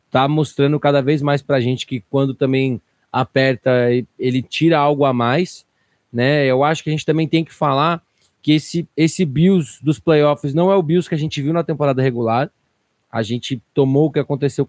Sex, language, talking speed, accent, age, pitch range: male, Portuguese, 205 wpm, Brazilian, 20-39, 130-165 Hz